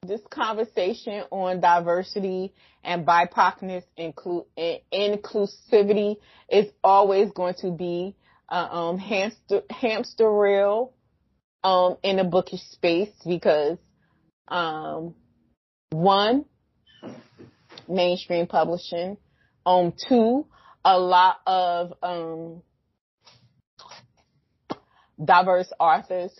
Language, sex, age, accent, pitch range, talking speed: English, female, 20-39, American, 170-225 Hz, 80 wpm